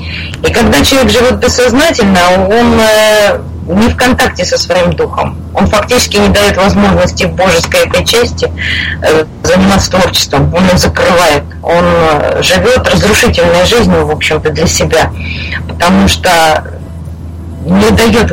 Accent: native